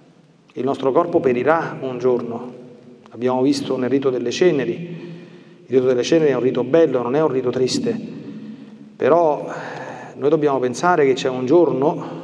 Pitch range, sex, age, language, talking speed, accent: 130-175 Hz, male, 40-59, Italian, 160 wpm, native